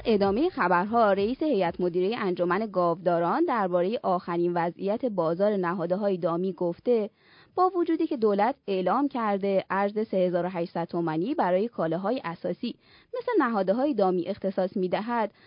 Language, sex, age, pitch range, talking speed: Persian, female, 20-39, 180-250 Hz, 135 wpm